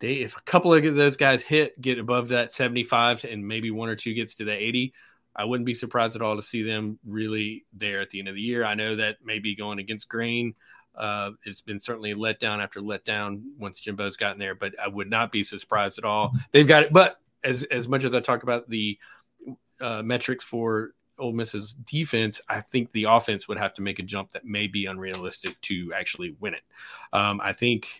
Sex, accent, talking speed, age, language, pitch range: male, American, 225 wpm, 30-49, English, 105-125 Hz